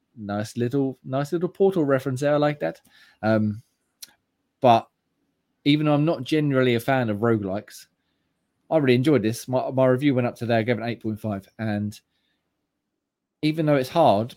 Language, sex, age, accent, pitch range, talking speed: English, male, 20-39, British, 105-130 Hz, 185 wpm